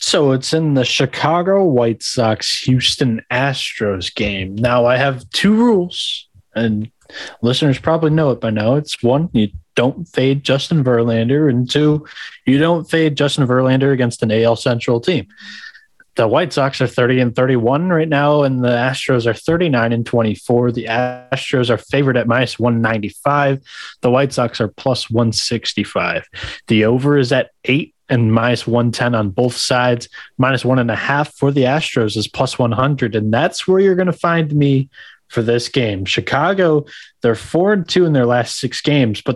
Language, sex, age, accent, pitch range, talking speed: English, male, 20-39, American, 115-145 Hz, 175 wpm